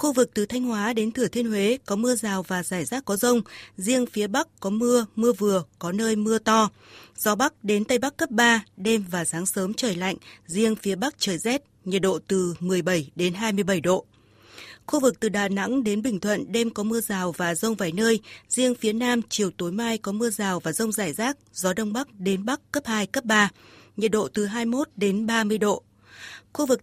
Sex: female